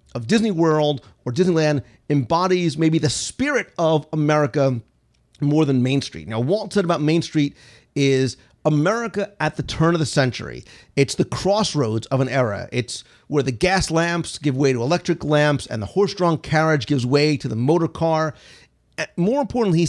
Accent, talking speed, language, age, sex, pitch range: American, 175 wpm, English, 40-59, male, 130-165 Hz